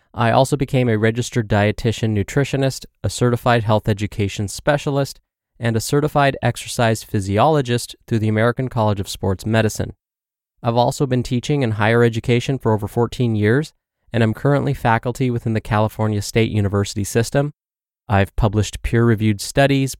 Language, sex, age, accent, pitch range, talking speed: English, male, 20-39, American, 105-130 Hz, 145 wpm